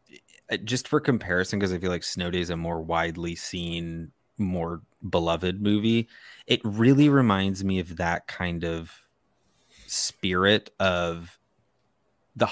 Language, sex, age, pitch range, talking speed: English, male, 20-39, 85-105 Hz, 135 wpm